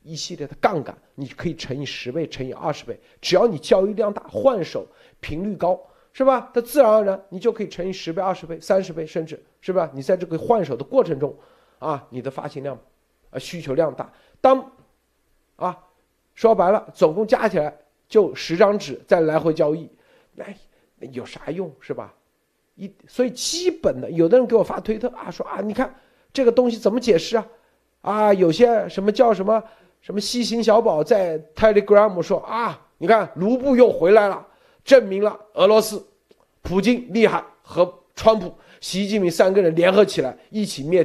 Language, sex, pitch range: Chinese, male, 160-220 Hz